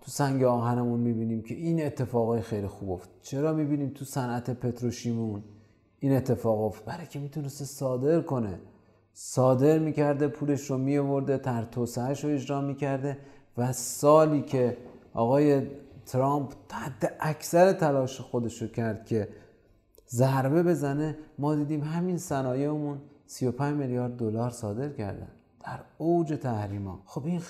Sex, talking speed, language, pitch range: male, 125 wpm, Persian, 115-150 Hz